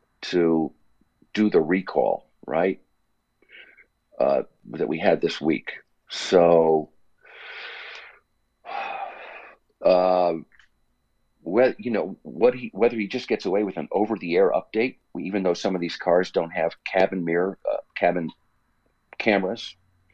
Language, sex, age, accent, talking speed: English, male, 50-69, American, 120 wpm